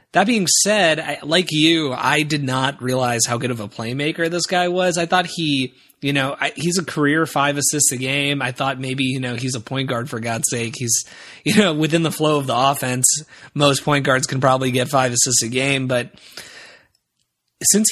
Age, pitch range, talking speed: 20-39, 120-155 Hz, 210 wpm